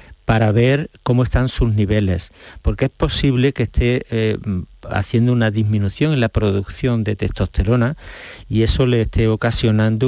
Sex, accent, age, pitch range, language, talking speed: male, Spanish, 50-69, 100-125 Hz, Spanish, 150 wpm